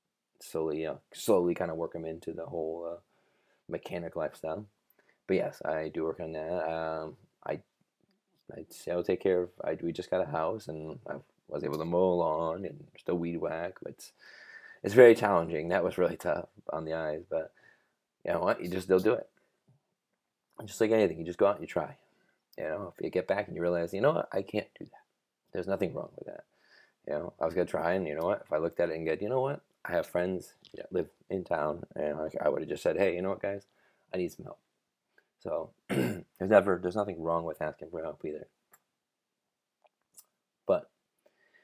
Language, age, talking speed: English, 20-39, 220 wpm